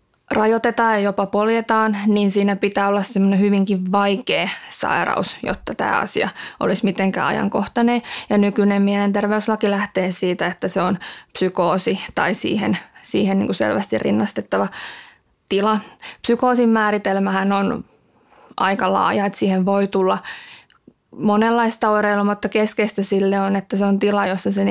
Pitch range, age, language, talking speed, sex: 190-210 Hz, 20-39, Finnish, 135 wpm, female